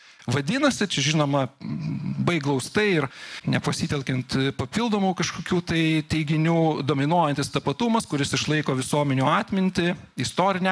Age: 40-59